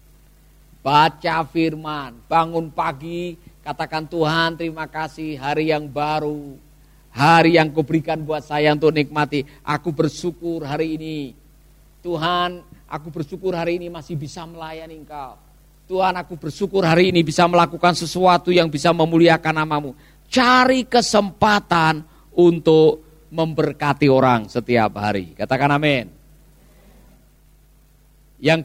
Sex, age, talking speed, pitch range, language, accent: male, 50-69, 110 wpm, 150-180 Hz, Indonesian, native